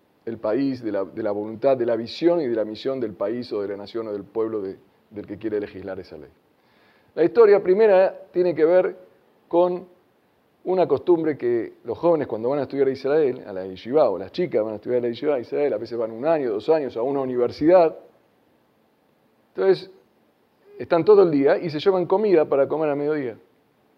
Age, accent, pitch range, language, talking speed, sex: 40-59, Argentinian, 125-180 Hz, Spanish, 215 wpm, male